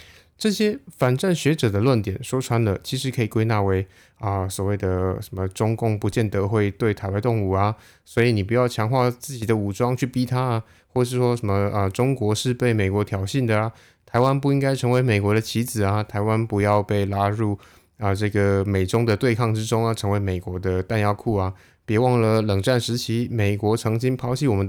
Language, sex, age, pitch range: Chinese, male, 20-39, 95-125 Hz